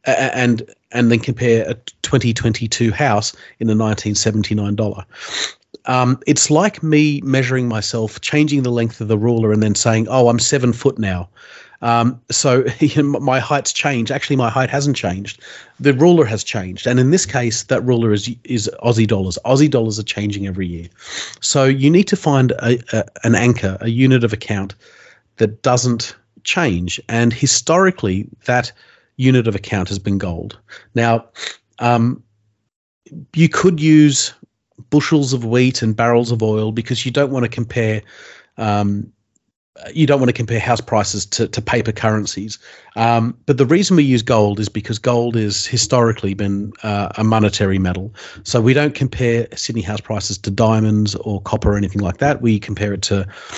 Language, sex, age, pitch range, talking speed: English, male, 30-49, 105-130 Hz, 170 wpm